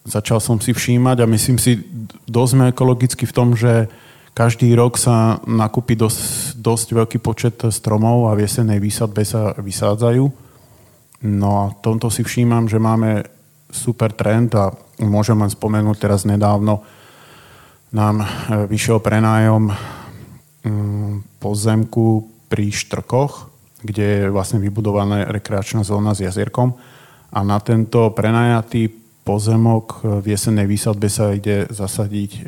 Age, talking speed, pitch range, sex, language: 30-49, 125 wpm, 105-120 Hz, male, Slovak